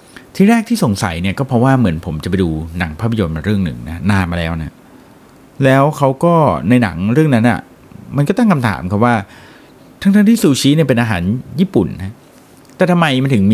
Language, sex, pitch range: Thai, male, 100-155 Hz